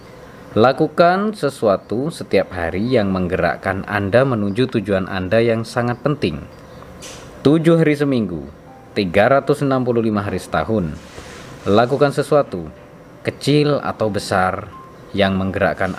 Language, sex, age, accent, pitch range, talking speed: Indonesian, male, 20-39, native, 110-140 Hz, 100 wpm